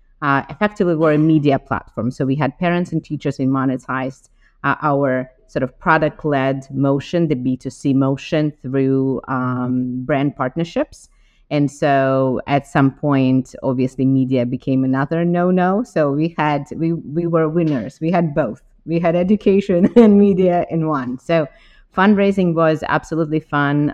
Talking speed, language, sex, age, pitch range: 150 wpm, English, female, 30-49, 135-165 Hz